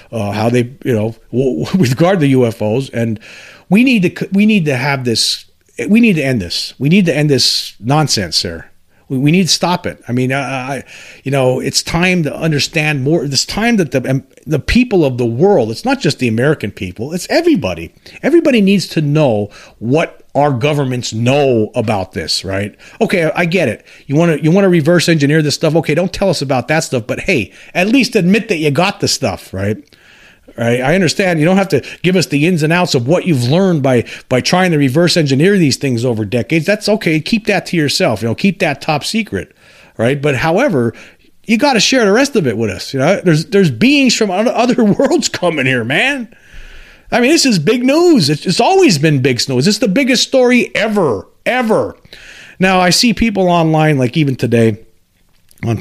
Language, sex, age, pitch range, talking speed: English, male, 40-59, 120-185 Hz, 215 wpm